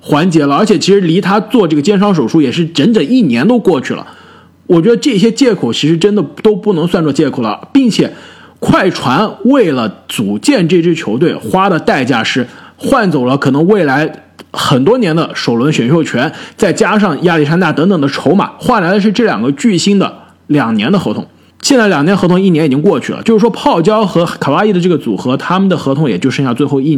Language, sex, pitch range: Chinese, male, 155-220 Hz